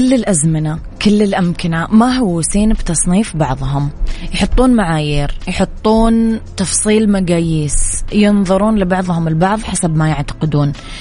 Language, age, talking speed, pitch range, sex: Arabic, 20-39, 110 wpm, 160-195 Hz, female